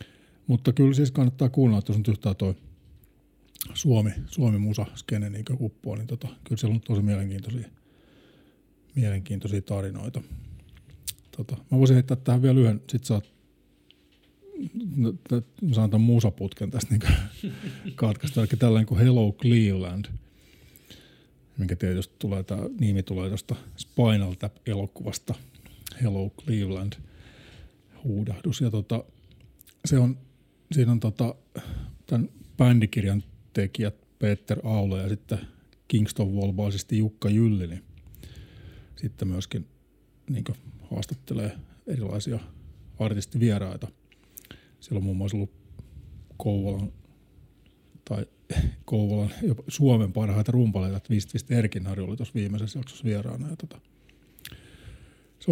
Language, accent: Finnish, native